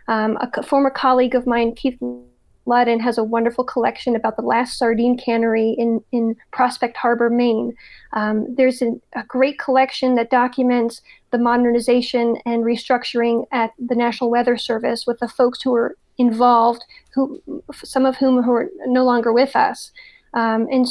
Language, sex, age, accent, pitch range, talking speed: English, female, 40-59, American, 235-260 Hz, 165 wpm